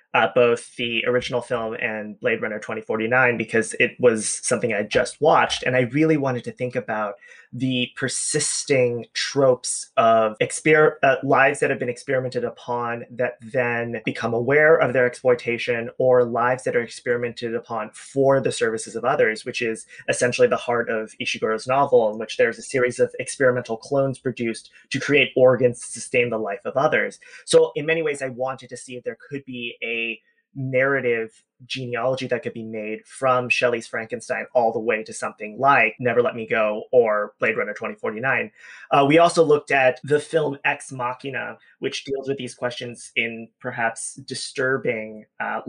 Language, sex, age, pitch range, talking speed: English, male, 20-39, 115-135 Hz, 170 wpm